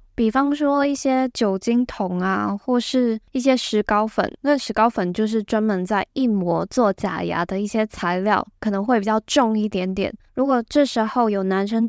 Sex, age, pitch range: female, 10-29, 190-235 Hz